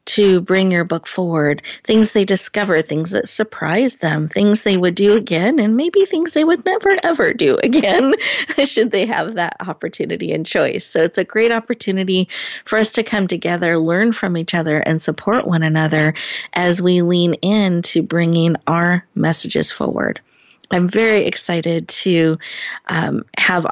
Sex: female